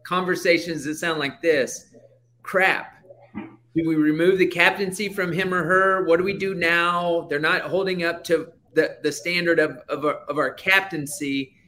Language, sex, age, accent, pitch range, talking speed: English, male, 30-49, American, 145-175 Hz, 175 wpm